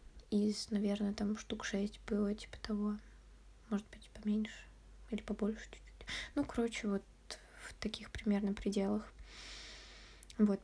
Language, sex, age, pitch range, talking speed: Russian, female, 20-39, 205-225 Hz, 125 wpm